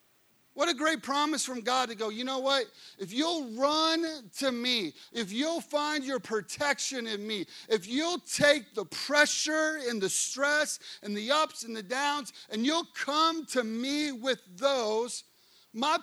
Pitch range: 205-275 Hz